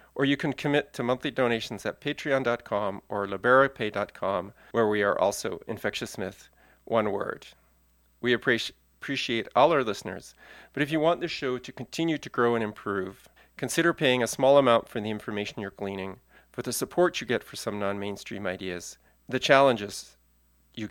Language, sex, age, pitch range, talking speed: English, male, 40-59, 105-140 Hz, 170 wpm